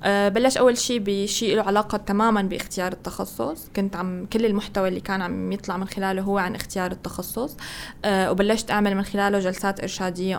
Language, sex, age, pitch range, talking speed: Arabic, female, 20-39, 185-210 Hz, 180 wpm